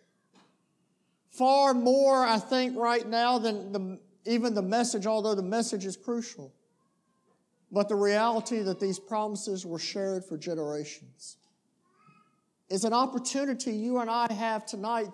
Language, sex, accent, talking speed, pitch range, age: English, male, American, 130 wpm, 195-245 Hz, 50-69